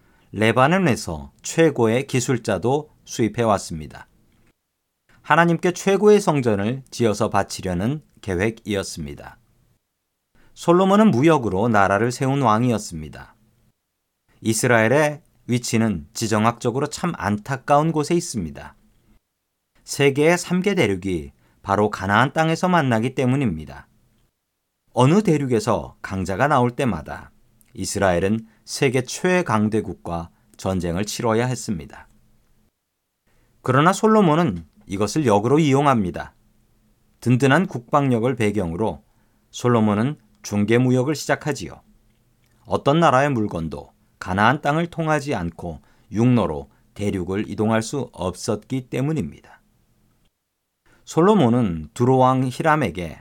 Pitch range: 100-135 Hz